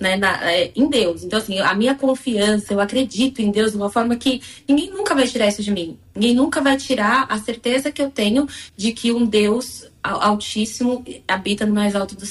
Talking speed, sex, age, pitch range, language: 215 wpm, female, 20-39, 210-260 Hz, Portuguese